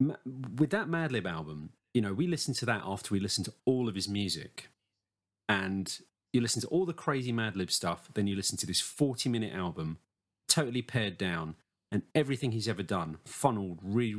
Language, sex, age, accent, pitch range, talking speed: English, male, 30-49, British, 95-130 Hz, 200 wpm